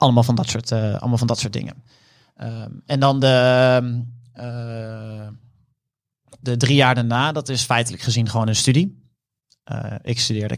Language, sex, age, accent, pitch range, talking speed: Dutch, male, 30-49, Dutch, 115-130 Hz, 160 wpm